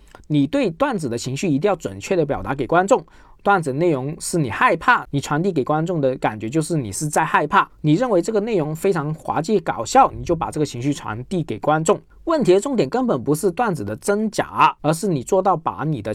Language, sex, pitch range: Chinese, male, 140-190 Hz